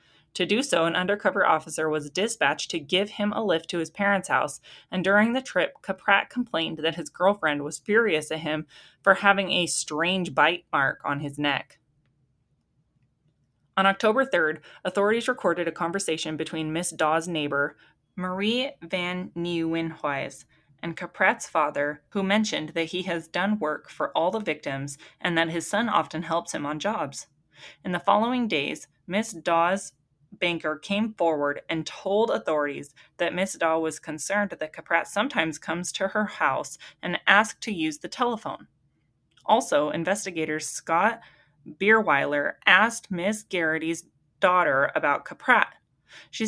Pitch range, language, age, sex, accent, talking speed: 155-195 Hz, English, 20-39, female, American, 150 wpm